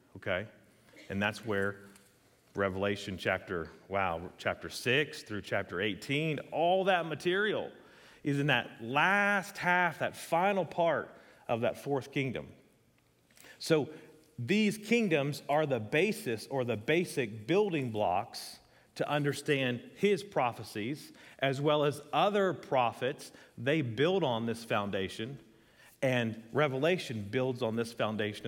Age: 40-59